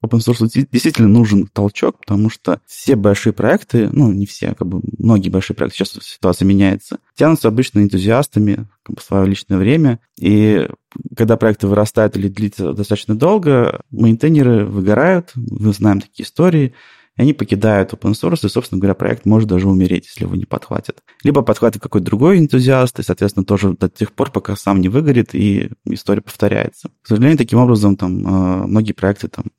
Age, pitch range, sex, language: 20-39, 100-125 Hz, male, Russian